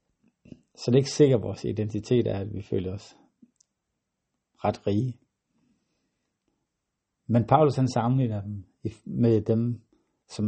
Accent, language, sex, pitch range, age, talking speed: native, Danish, male, 110-130 Hz, 60-79, 130 wpm